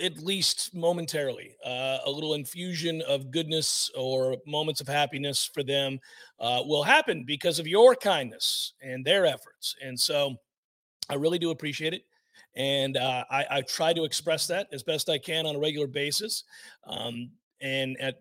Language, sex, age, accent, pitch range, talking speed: English, male, 40-59, American, 135-165 Hz, 165 wpm